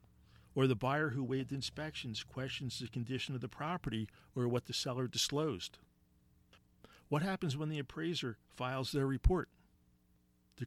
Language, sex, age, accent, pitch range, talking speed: English, male, 50-69, American, 105-145 Hz, 145 wpm